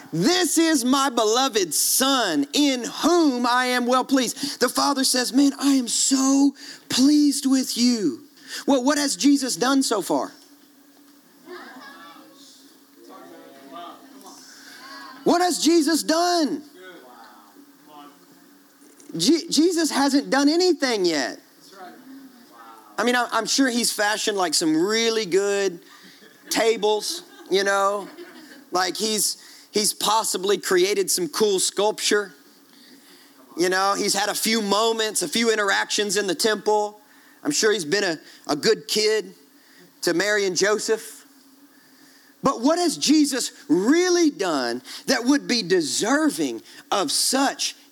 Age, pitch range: 40-59, 230-310 Hz